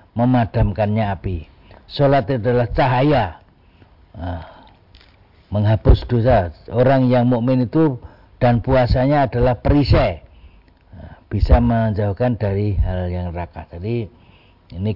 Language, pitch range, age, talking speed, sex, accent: Indonesian, 90-130 Hz, 50-69, 100 wpm, male, native